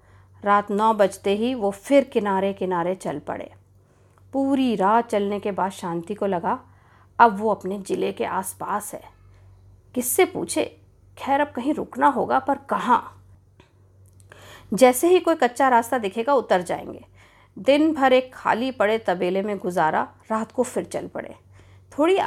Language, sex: Hindi, female